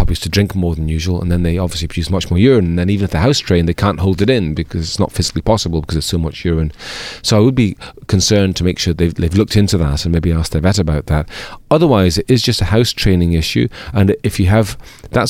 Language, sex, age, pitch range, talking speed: English, male, 30-49, 85-100 Hz, 270 wpm